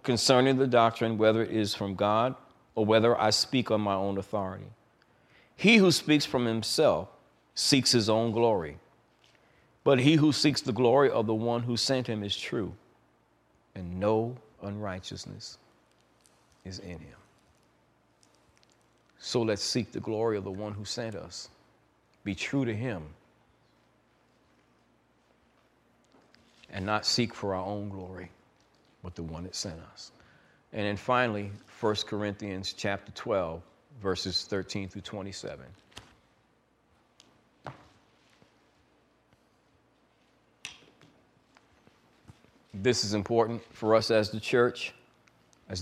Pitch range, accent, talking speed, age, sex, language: 95-115 Hz, American, 120 wpm, 40-59, male, English